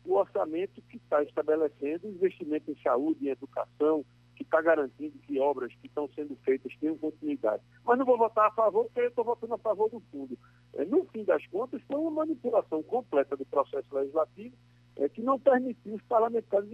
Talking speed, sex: 180 wpm, male